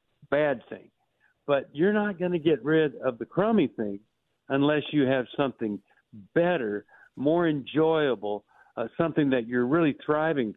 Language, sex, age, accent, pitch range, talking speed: English, male, 60-79, American, 125-160 Hz, 150 wpm